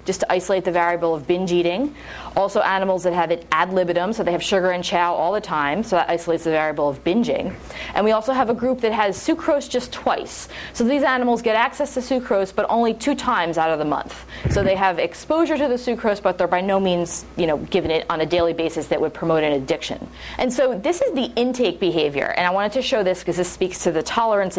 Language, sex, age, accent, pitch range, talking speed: English, female, 30-49, American, 175-245 Hz, 245 wpm